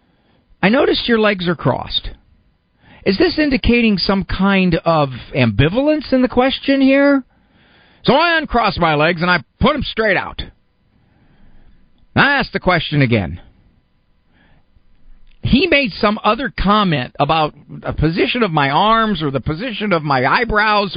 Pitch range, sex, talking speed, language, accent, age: 120-205 Hz, male, 145 wpm, English, American, 50-69